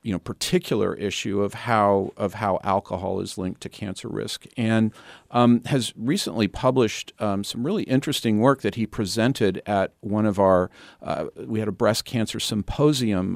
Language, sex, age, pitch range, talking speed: English, male, 50-69, 100-115 Hz, 170 wpm